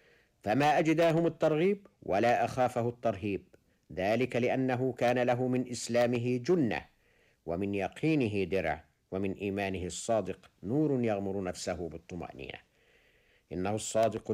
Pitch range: 100-160 Hz